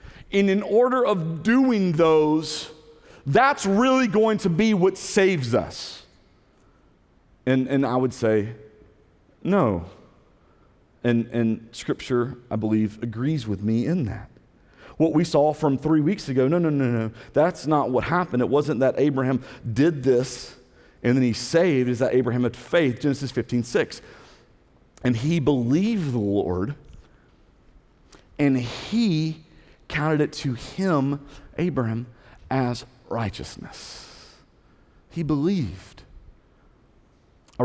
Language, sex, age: English, male, 40-59